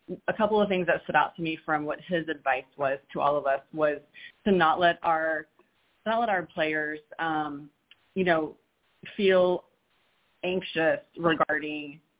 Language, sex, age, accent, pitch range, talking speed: English, female, 30-49, American, 155-180 Hz, 160 wpm